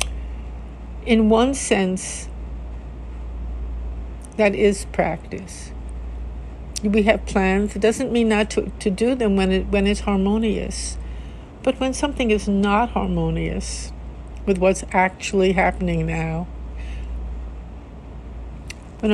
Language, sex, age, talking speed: English, female, 60-79, 105 wpm